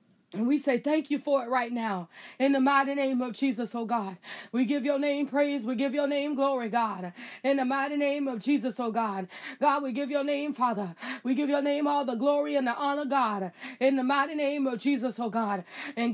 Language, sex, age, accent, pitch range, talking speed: English, female, 20-39, American, 255-295 Hz, 240 wpm